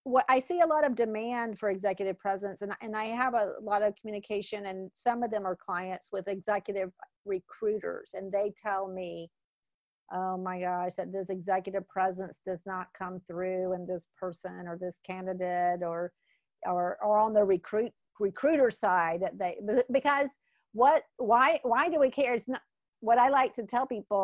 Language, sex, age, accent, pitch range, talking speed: English, female, 50-69, American, 190-240 Hz, 180 wpm